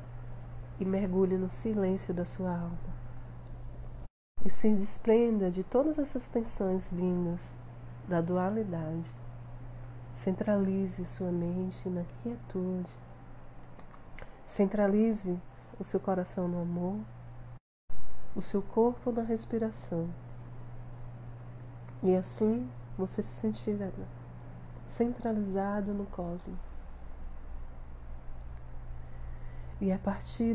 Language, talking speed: Portuguese, 85 wpm